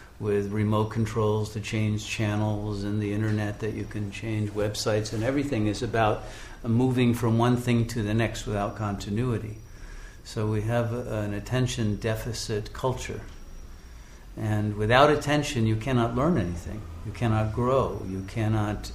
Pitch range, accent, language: 105-120 Hz, American, English